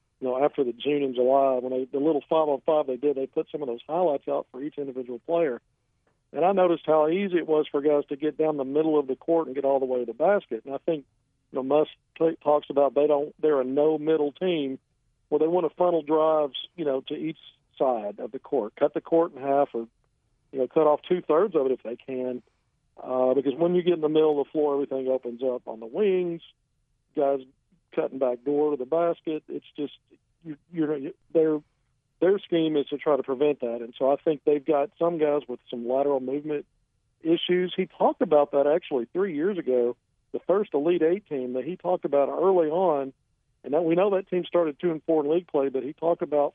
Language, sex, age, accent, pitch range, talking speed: English, male, 50-69, American, 130-155 Hz, 225 wpm